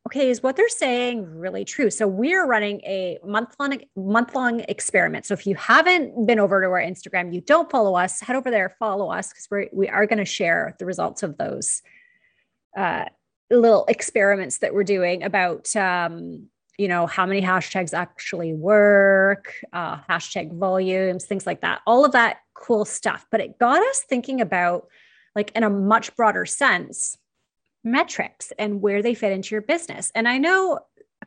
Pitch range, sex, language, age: 190-245 Hz, female, English, 30-49